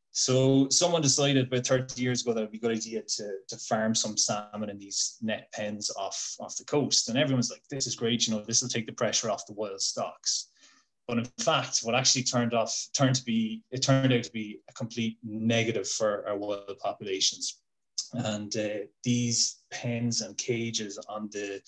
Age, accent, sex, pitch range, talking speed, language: 20-39, Irish, male, 110-125 Hz, 200 wpm, English